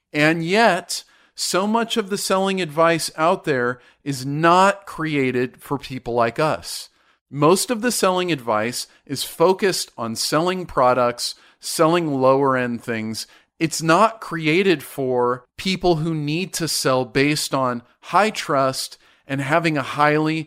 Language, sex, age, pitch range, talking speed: English, male, 40-59, 130-170 Hz, 140 wpm